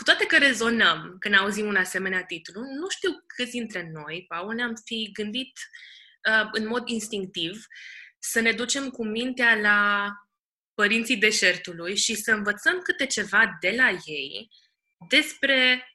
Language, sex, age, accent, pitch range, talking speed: Romanian, female, 20-39, native, 195-250 Hz, 145 wpm